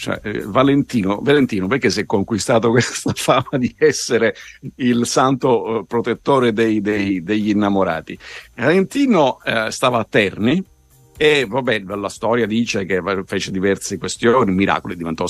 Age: 50-69